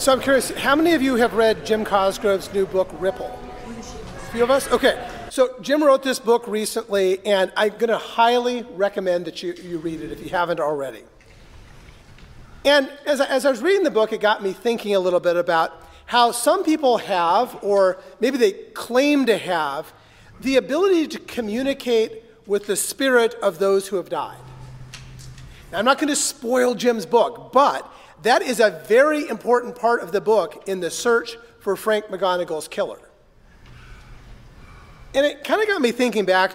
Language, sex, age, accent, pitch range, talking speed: English, male, 40-59, American, 190-250 Hz, 180 wpm